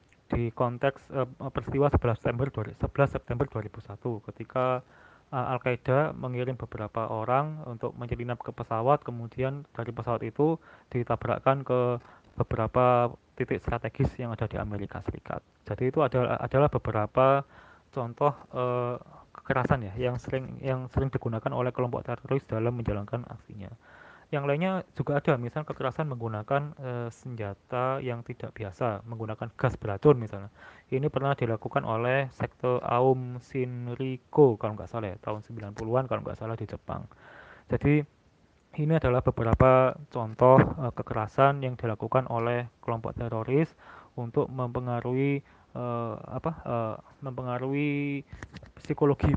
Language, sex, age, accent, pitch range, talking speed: Indonesian, male, 20-39, native, 115-135 Hz, 130 wpm